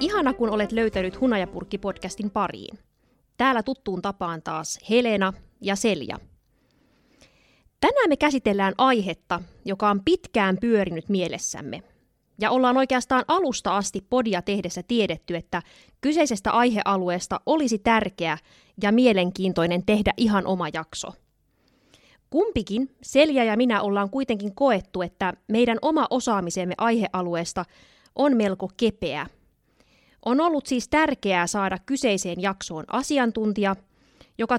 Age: 20-39